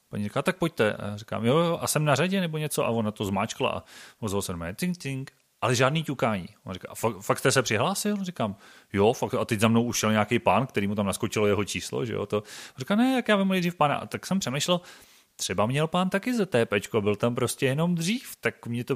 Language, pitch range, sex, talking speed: Czech, 100-140 Hz, male, 235 wpm